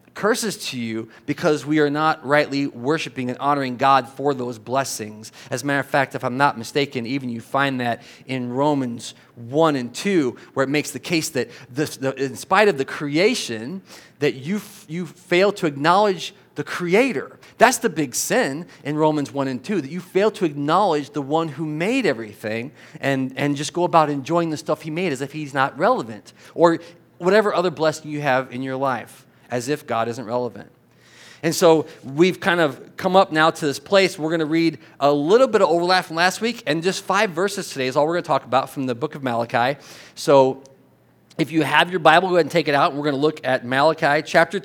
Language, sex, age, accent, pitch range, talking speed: English, male, 40-59, American, 130-170 Hz, 215 wpm